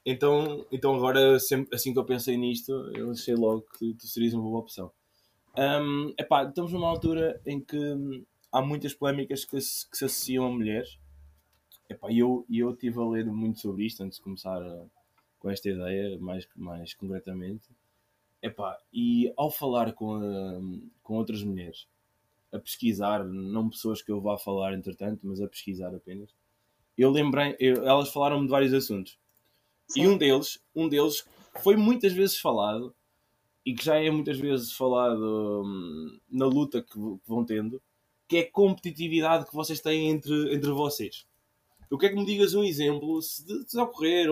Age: 20-39